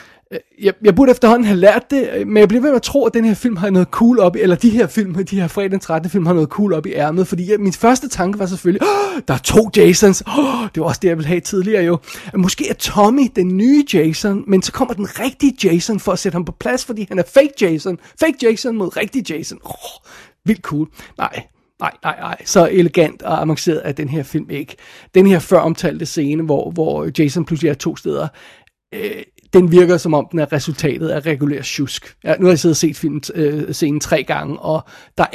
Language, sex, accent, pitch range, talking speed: Danish, male, native, 155-210 Hz, 235 wpm